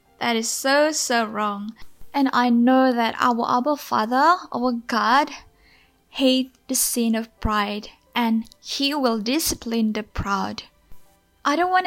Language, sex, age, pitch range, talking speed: Indonesian, female, 10-29, 225-270 Hz, 140 wpm